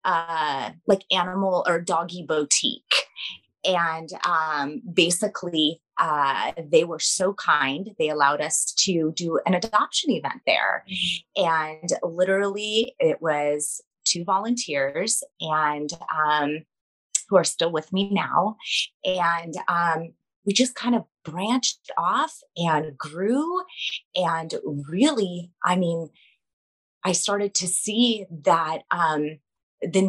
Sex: female